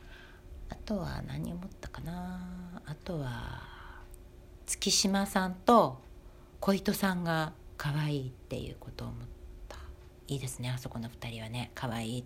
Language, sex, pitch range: Japanese, female, 120-180 Hz